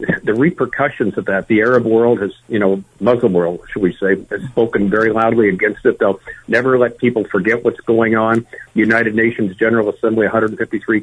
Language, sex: English, male